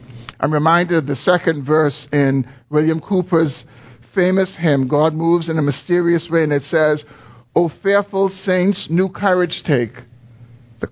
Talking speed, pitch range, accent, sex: 150 wpm, 120-155 Hz, American, male